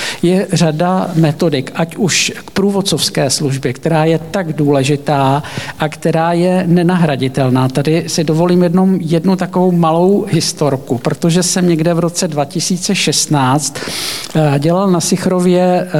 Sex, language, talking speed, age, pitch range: male, Czech, 120 wpm, 50-69, 145-175 Hz